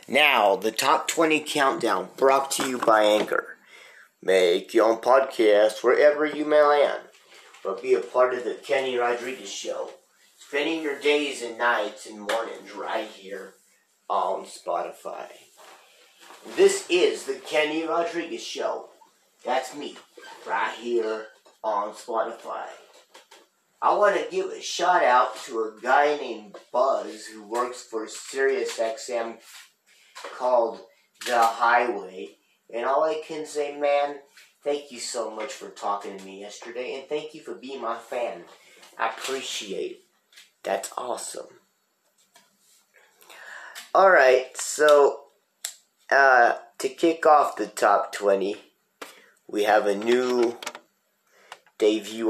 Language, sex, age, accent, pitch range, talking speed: English, male, 30-49, American, 115-155 Hz, 125 wpm